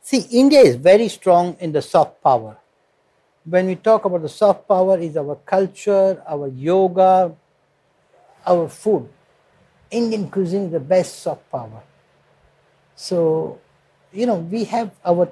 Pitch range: 160-195 Hz